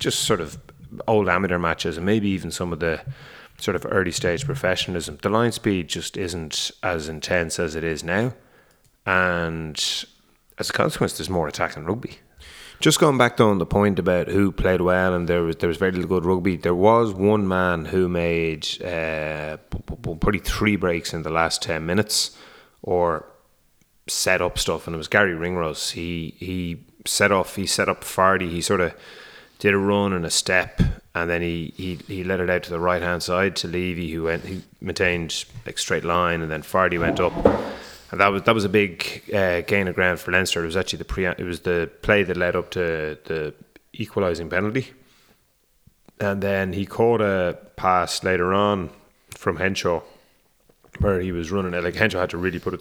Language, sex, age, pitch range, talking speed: English, male, 30-49, 85-100 Hz, 200 wpm